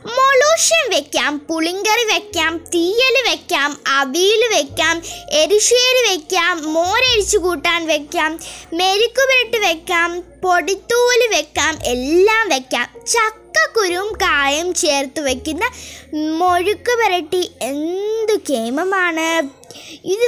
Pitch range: 295-415 Hz